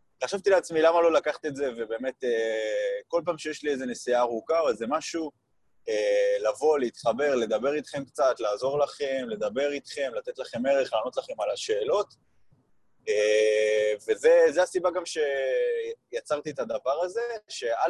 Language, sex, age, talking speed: Hebrew, male, 20-39, 140 wpm